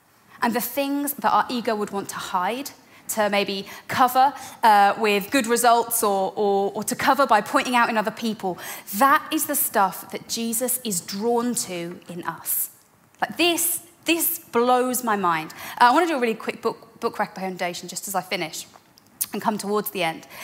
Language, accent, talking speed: English, British, 190 wpm